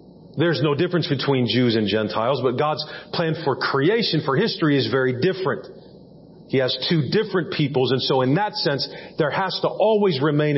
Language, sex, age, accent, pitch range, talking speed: English, male, 40-59, American, 115-155 Hz, 180 wpm